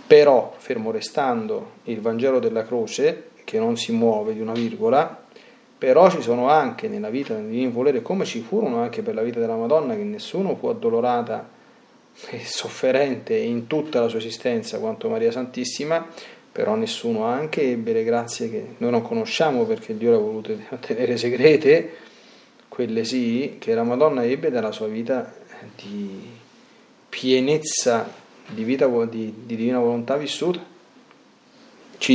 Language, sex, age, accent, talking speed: Italian, male, 30-49, native, 150 wpm